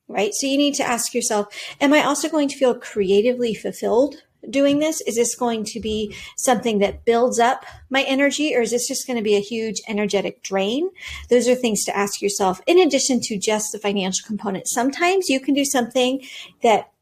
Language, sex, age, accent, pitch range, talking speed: English, female, 40-59, American, 215-270 Hz, 205 wpm